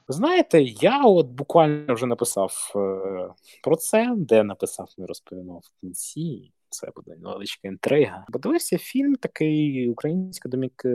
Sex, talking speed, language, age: male, 125 wpm, Ukrainian, 20-39